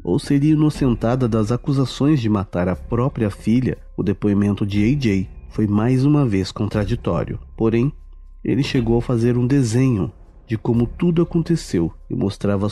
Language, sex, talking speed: Portuguese, male, 150 wpm